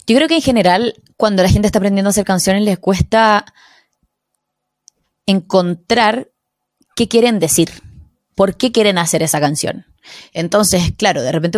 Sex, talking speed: female, 150 wpm